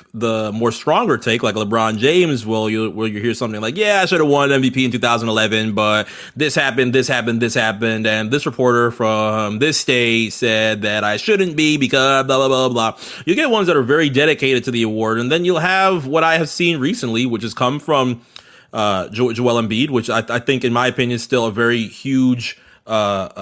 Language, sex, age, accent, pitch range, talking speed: English, male, 30-49, American, 110-130 Hz, 215 wpm